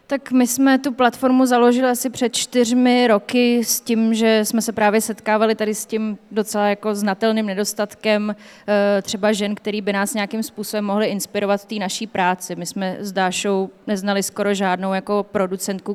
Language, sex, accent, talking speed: Czech, female, native, 175 wpm